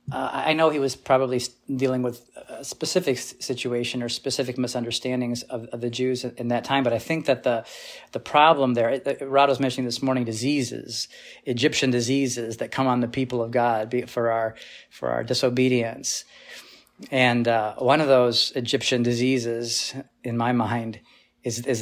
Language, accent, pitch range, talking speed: English, American, 120-140 Hz, 180 wpm